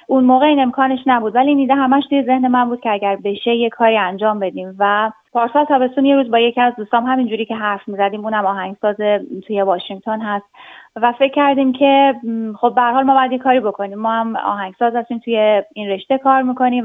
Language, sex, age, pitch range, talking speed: Persian, female, 30-49, 215-260 Hz, 200 wpm